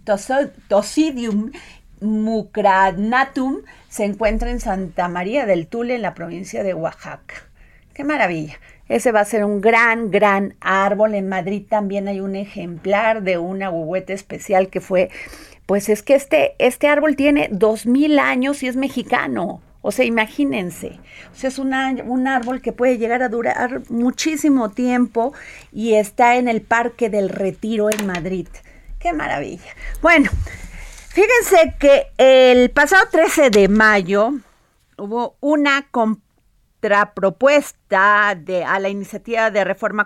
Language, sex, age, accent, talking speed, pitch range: Spanish, female, 40-59, Mexican, 140 wpm, 200-250 Hz